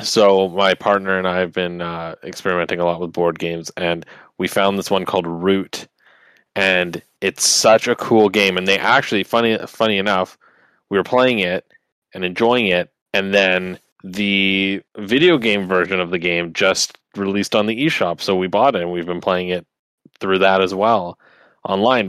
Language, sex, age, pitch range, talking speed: English, male, 20-39, 95-105 Hz, 185 wpm